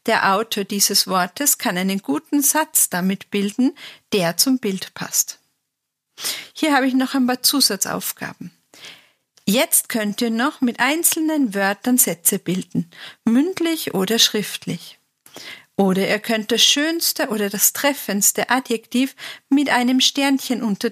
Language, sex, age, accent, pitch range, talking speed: German, female, 50-69, German, 210-280 Hz, 130 wpm